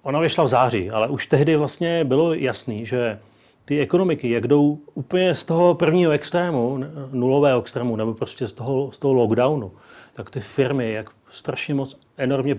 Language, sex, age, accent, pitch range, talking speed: Czech, male, 40-59, native, 115-140 Hz, 165 wpm